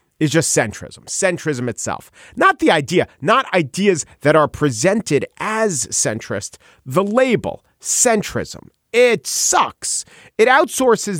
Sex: male